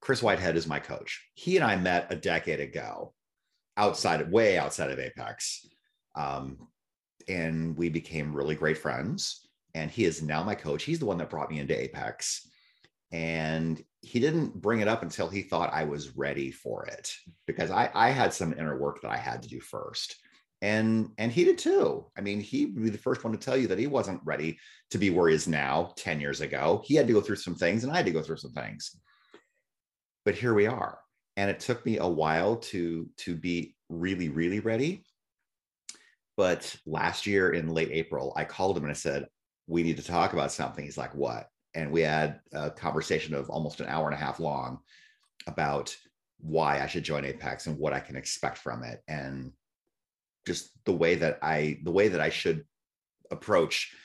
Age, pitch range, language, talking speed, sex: 30-49, 75-100 Hz, English, 205 wpm, male